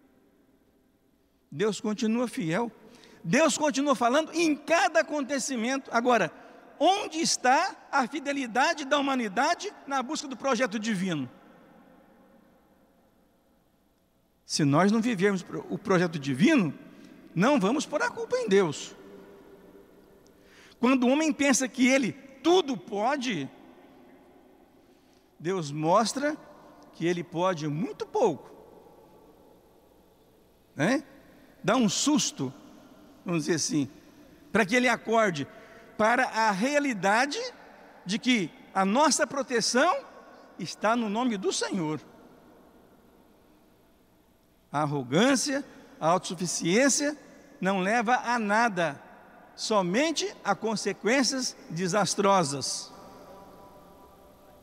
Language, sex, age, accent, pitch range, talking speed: Portuguese, male, 60-79, Brazilian, 190-275 Hz, 95 wpm